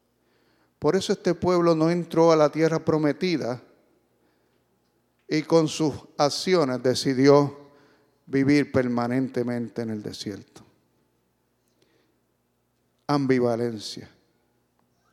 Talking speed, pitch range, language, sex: 85 wpm, 135-195 Hz, English, male